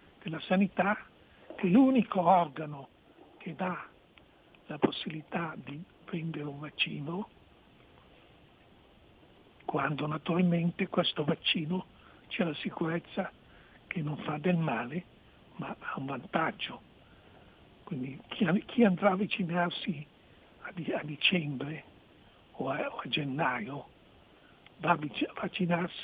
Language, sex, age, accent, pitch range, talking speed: Italian, male, 60-79, native, 155-200 Hz, 100 wpm